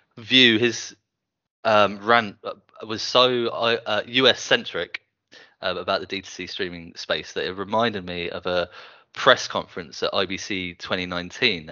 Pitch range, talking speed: 95-115 Hz, 135 wpm